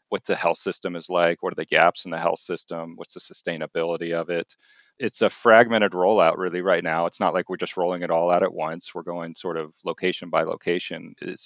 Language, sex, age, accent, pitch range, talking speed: English, male, 40-59, American, 85-95 Hz, 235 wpm